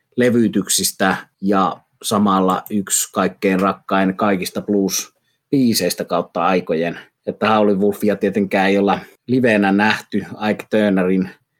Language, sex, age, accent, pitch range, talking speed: Finnish, male, 30-49, native, 95-105 Hz, 105 wpm